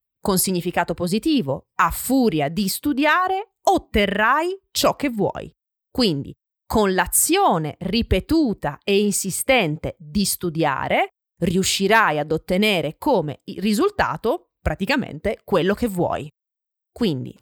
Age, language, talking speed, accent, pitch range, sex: 30-49, Italian, 100 wpm, native, 175-285 Hz, female